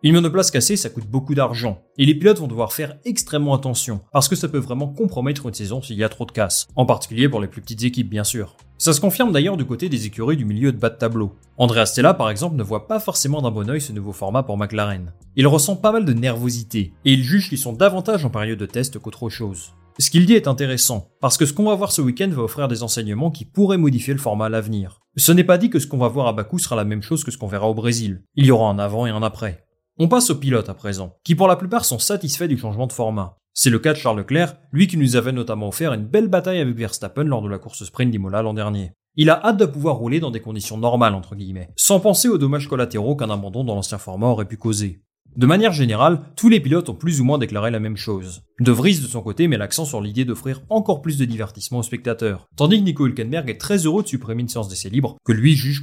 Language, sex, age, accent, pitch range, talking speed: French, male, 30-49, French, 110-150 Hz, 275 wpm